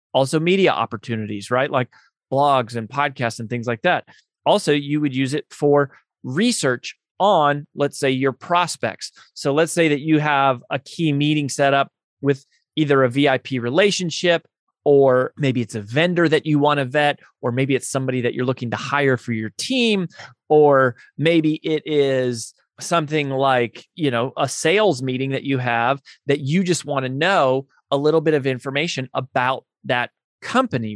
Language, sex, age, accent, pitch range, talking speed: English, male, 30-49, American, 130-170 Hz, 175 wpm